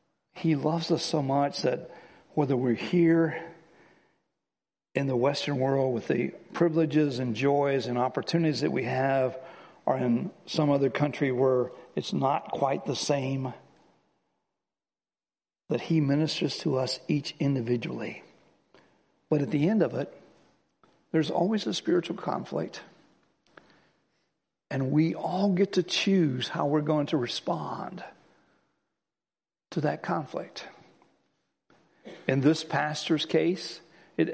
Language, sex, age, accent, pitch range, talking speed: English, male, 60-79, American, 135-170 Hz, 125 wpm